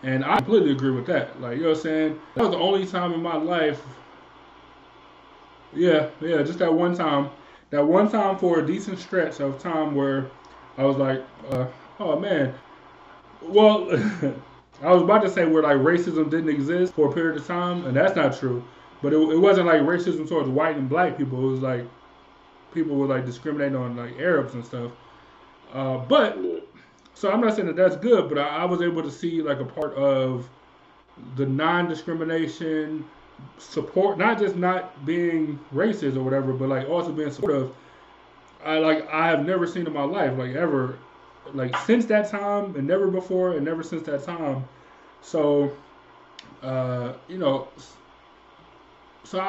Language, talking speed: English, 175 wpm